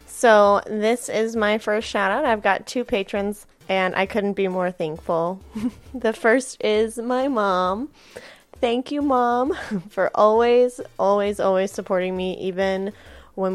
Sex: female